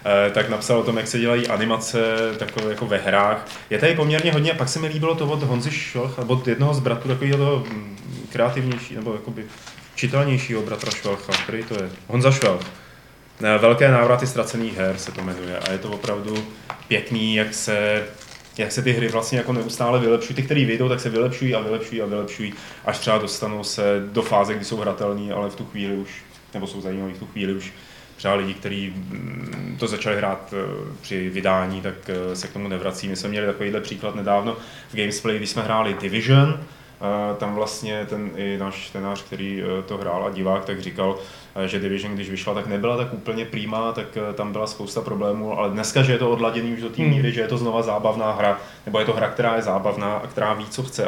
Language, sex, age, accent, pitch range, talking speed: Czech, male, 20-39, native, 100-120 Hz, 200 wpm